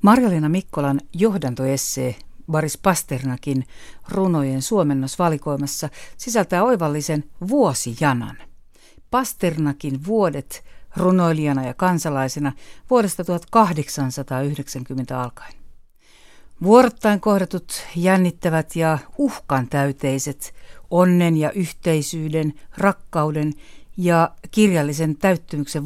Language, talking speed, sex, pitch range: Finnish, 70 wpm, female, 145-195 Hz